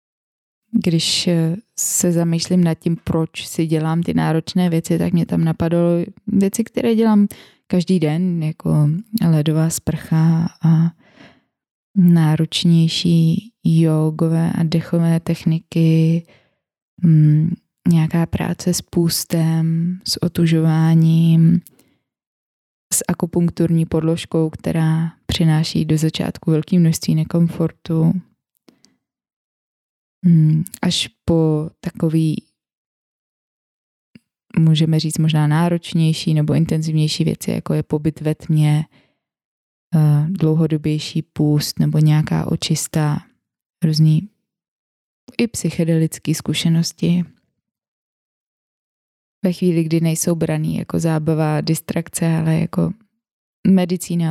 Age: 20-39